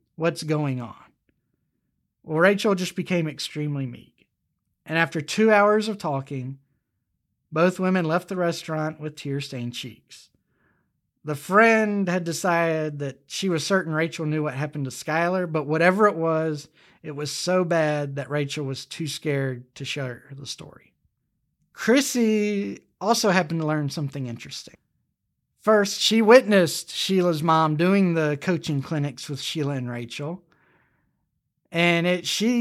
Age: 40-59